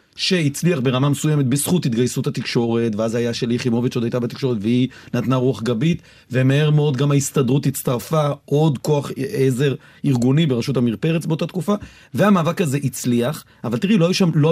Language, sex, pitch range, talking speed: Hebrew, male, 120-155 Hz, 165 wpm